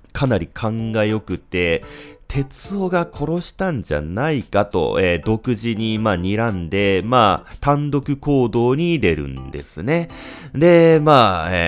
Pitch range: 85-110 Hz